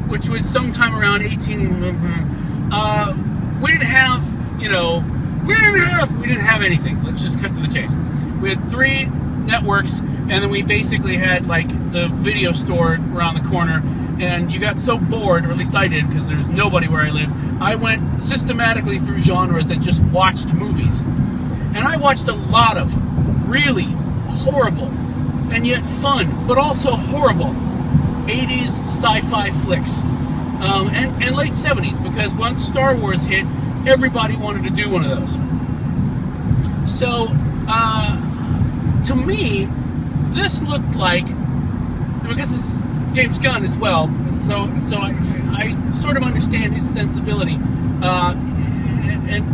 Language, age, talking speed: English, 40-59, 155 wpm